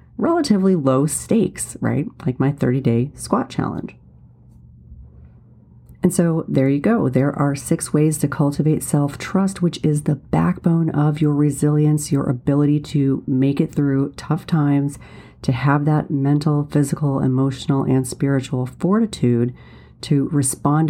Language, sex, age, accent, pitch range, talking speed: English, female, 40-59, American, 130-155 Hz, 140 wpm